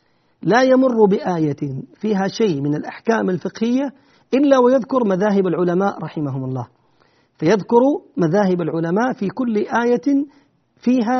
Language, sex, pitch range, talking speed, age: Arabic, male, 180-250 Hz, 115 wpm, 50-69